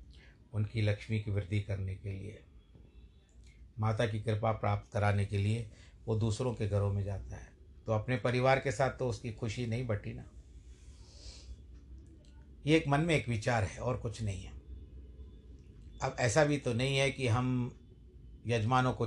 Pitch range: 105-140 Hz